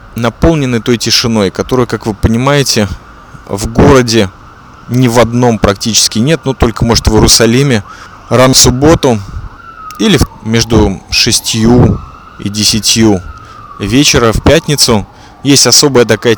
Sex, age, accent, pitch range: male, 20-39, native, 110-140 Hz